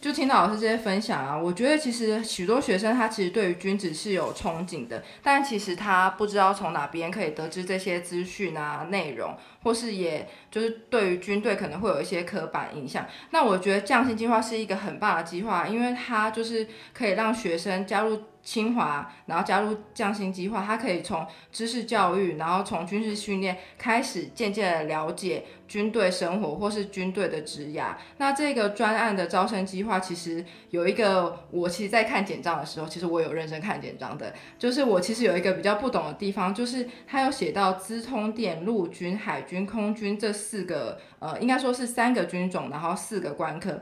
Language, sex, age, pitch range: Chinese, female, 20-39, 180-225 Hz